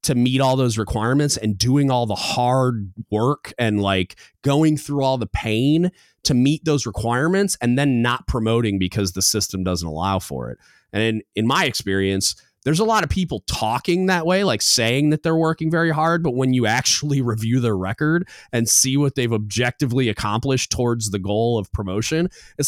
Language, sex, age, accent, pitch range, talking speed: English, male, 30-49, American, 110-170 Hz, 190 wpm